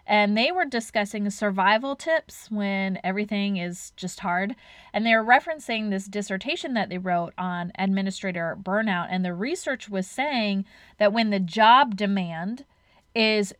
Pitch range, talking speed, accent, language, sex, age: 185-225 Hz, 145 wpm, American, English, female, 30-49